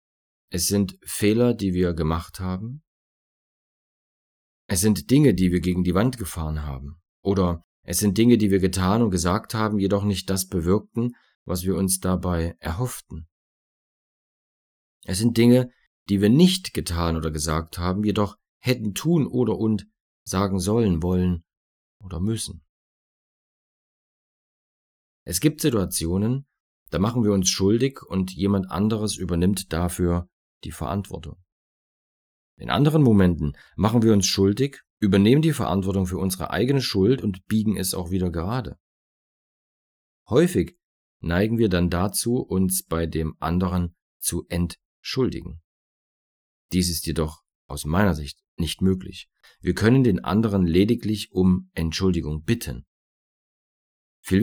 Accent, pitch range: German, 85-105 Hz